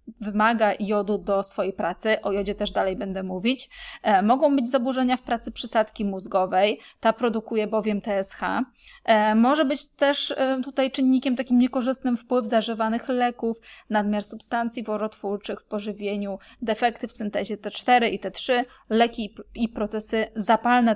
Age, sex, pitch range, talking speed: 20-39, female, 210-250 Hz, 135 wpm